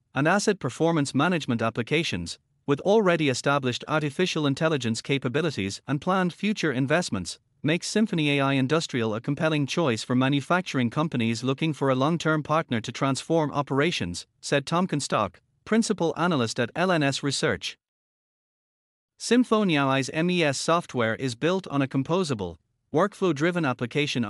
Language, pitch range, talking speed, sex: English, 125-170 Hz, 125 wpm, male